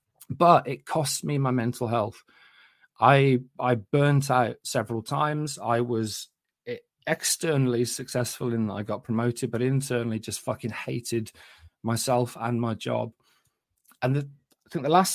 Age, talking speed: 30-49, 145 wpm